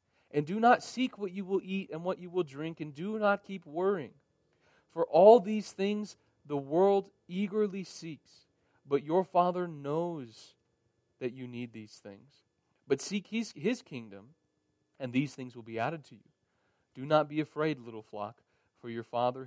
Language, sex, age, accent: English, male, 40-59, American